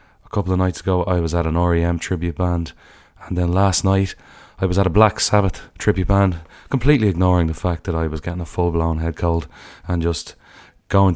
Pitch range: 85-100 Hz